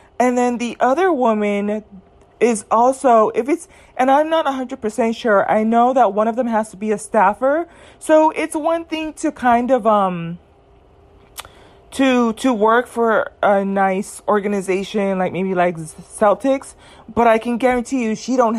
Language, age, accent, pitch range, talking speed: English, 30-49, American, 205-250 Hz, 165 wpm